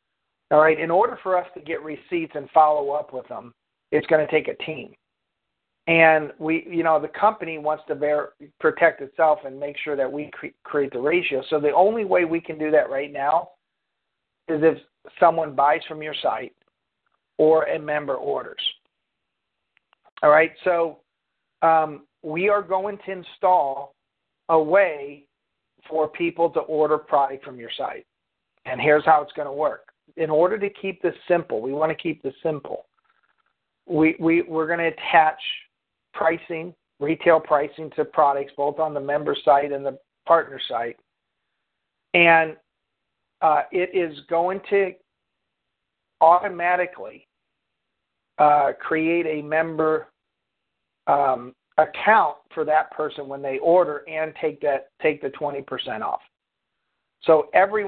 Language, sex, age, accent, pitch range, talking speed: English, male, 50-69, American, 145-170 Hz, 150 wpm